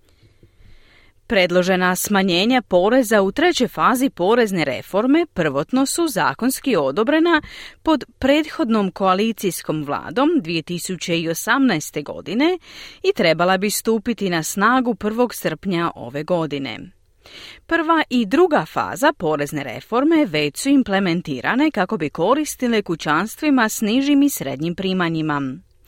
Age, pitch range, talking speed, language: 40-59, 160-265 Hz, 105 wpm, Croatian